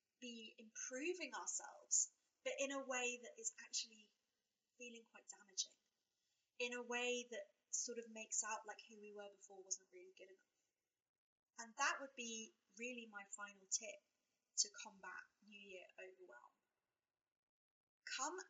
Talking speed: 145 wpm